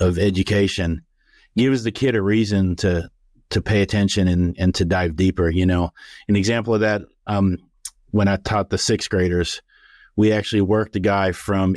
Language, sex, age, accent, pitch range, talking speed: English, male, 40-59, American, 95-110 Hz, 180 wpm